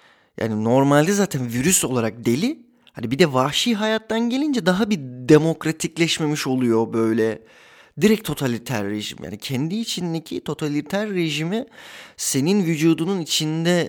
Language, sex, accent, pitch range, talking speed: Turkish, male, native, 110-155 Hz, 120 wpm